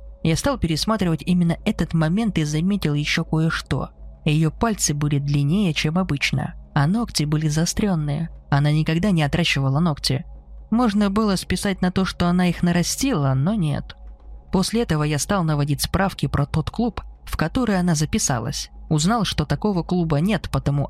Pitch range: 145-185 Hz